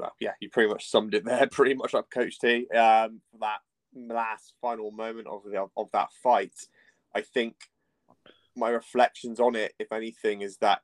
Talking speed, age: 170 wpm, 20-39